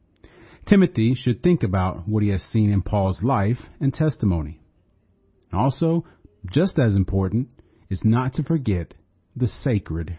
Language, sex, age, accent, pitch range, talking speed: English, male, 40-59, American, 95-130 Hz, 135 wpm